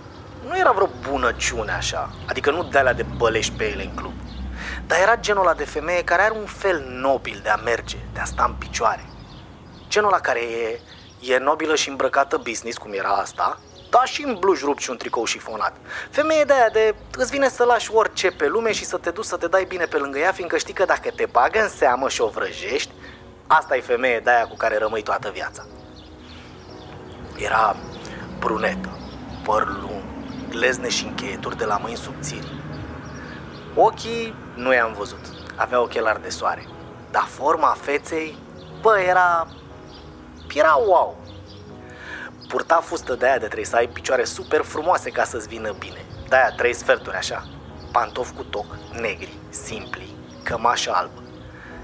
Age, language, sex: 30-49, Romanian, male